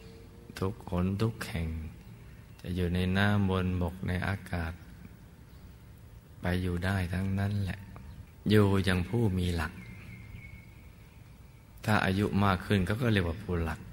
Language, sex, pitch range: Thai, male, 85-100 Hz